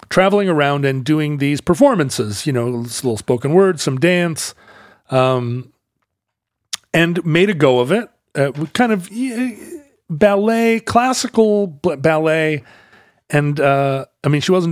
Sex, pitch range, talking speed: male, 130-170 Hz, 135 wpm